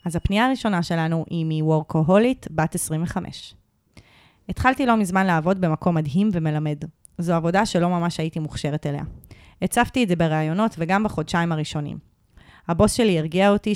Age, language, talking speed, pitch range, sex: 20-39, Hebrew, 145 wpm, 160-210 Hz, female